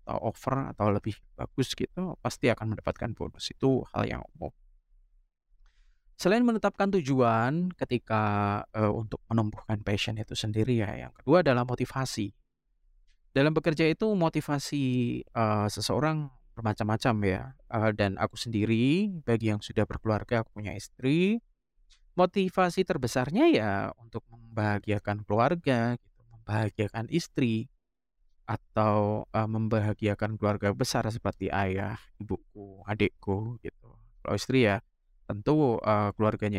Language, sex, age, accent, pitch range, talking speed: Indonesian, male, 20-39, native, 105-150 Hz, 120 wpm